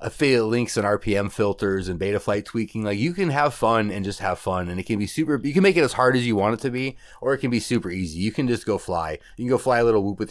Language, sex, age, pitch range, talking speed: English, male, 30-49, 95-120 Hz, 315 wpm